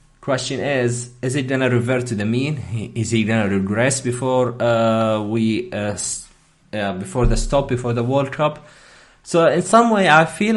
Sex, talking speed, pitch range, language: male, 175 wpm, 110-140 Hz, English